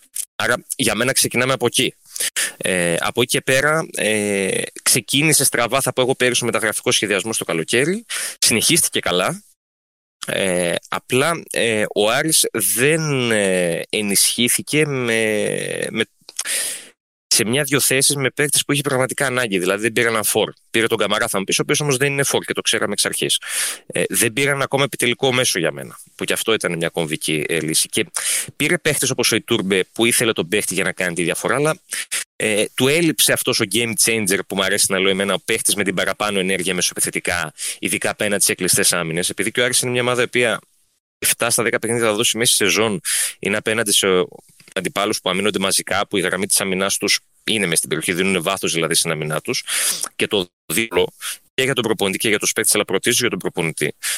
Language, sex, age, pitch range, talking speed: Greek, male, 20-39, 95-135 Hz, 185 wpm